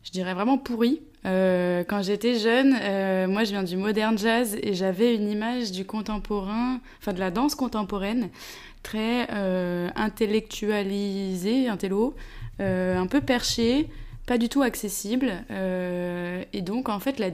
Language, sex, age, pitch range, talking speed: French, female, 20-39, 190-235 Hz, 150 wpm